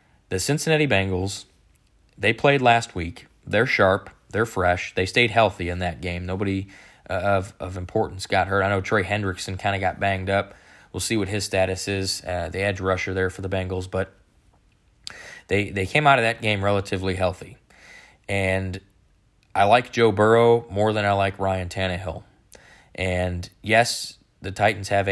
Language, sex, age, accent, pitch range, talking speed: English, male, 20-39, American, 95-105 Hz, 175 wpm